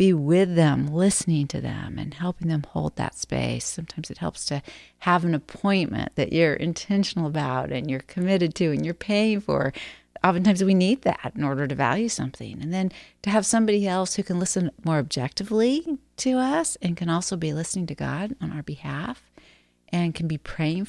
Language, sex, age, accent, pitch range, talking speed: English, female, 40-59, American, 145-195 Hz, 195 wpm